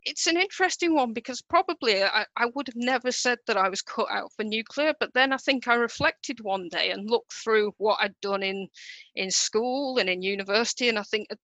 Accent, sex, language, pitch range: British, female, English, 195-225 Hz